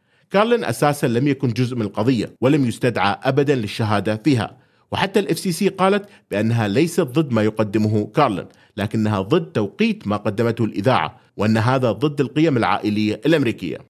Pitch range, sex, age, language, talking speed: 110-150 Hz, male, 30-49, Arabic, 145 wpm